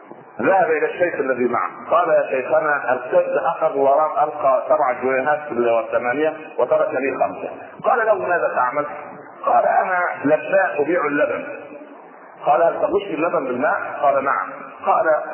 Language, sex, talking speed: Arabic, male, 140 wpm